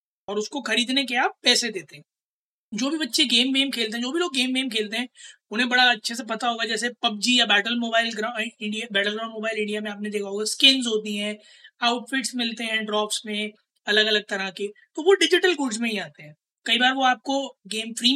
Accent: native